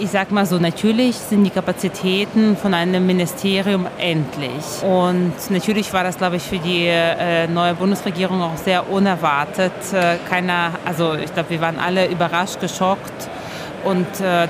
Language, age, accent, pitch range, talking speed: German, 30-49, German, 170-200 Hz, 150 wpm